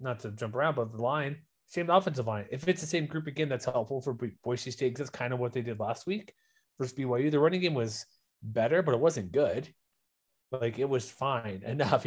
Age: 30-49